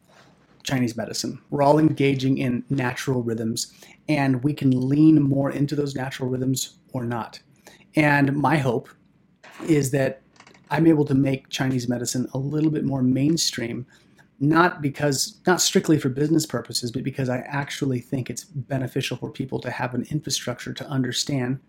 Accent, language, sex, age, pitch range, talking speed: American, English, male, 30-49, 125-150 Hz, 160 wpm